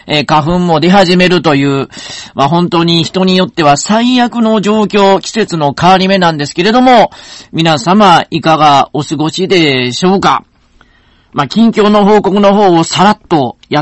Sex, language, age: male, Japanese, 40-59